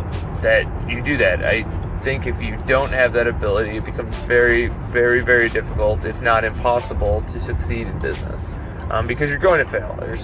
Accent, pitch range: American, 105-130 Hz